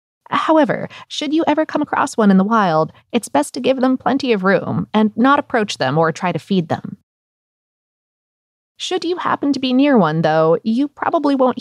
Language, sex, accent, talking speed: English, female, American, 195 wpm